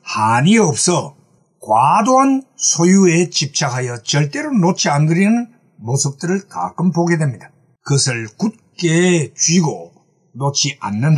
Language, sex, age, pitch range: Korean, male, 60-79, 145-210 Hz